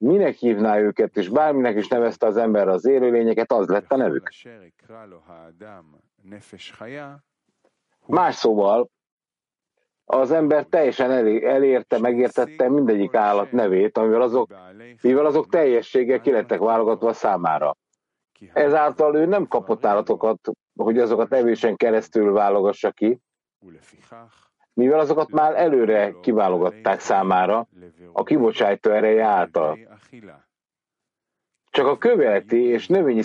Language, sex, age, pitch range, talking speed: English, male, 50-69, 105-140 Hz, 105 wpm